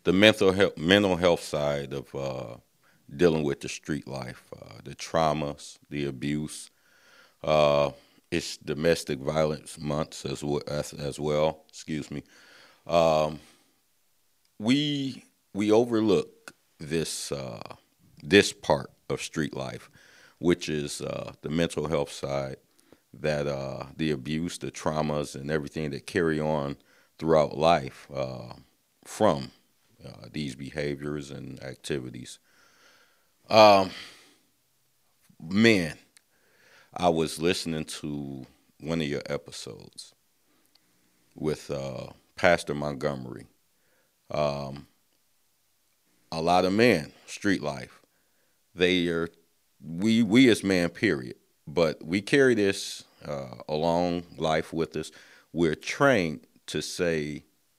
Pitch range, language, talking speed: 70-85 Hz, English, 115 wpm